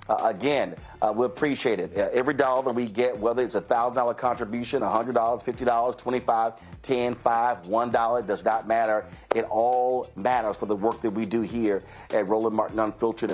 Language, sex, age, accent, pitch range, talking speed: English, male, 50-69, American, 110-130 Hz, 180 wpm